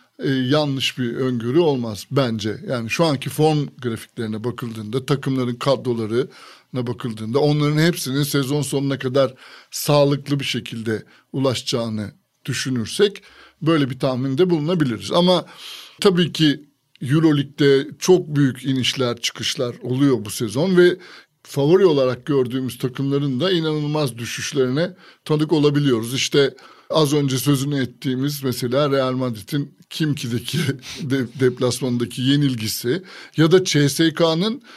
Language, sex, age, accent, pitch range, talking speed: Turkish, male, 60-79, native, 130-175 Hz, 115 wpm